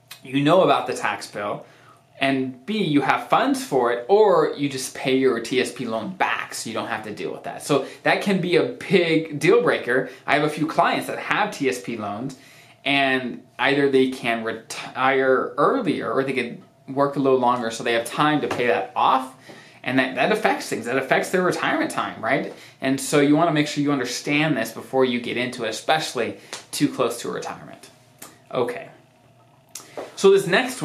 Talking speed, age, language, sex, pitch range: 195 wpm, 20-39, English, male, 130-170 Hz